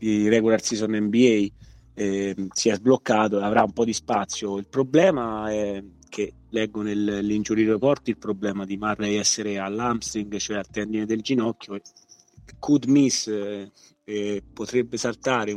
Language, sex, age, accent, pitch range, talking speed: Italian, male, 30-49, native, 100-110 Hz, 145 wpm